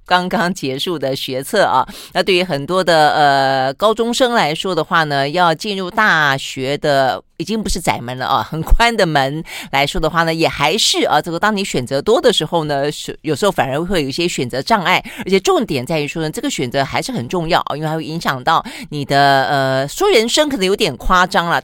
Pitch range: 140-195 Hz